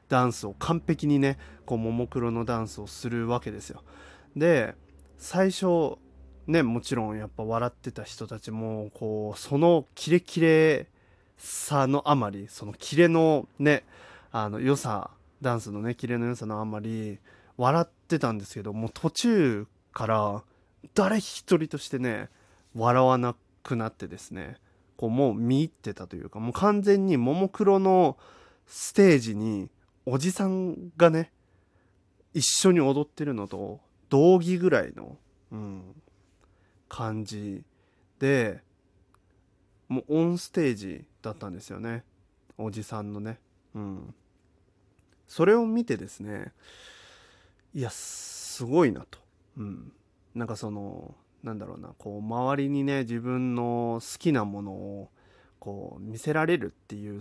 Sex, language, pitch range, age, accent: male, Japanese, 100-140 Hz, 20-39, native